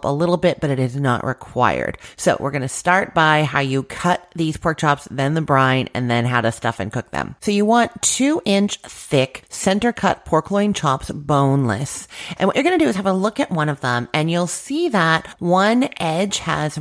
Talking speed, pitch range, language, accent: 230 wpm, 130-180 Hz, English, American